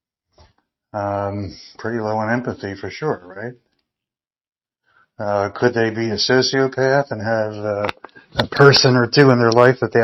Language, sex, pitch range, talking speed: English, male, 100-120 Hz, 155 wpm